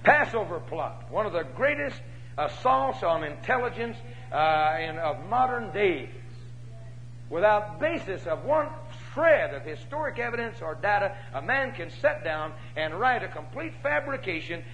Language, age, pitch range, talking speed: English, 60-79, 120-175 Hz, 140 wpm